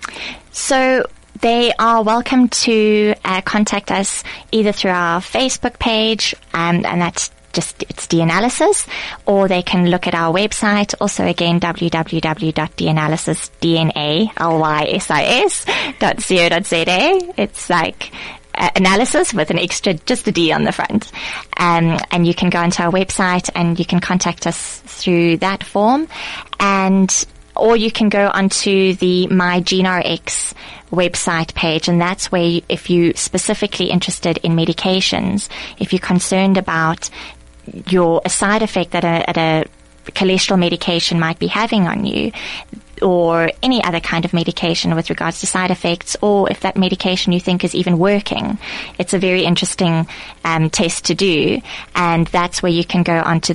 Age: 20-39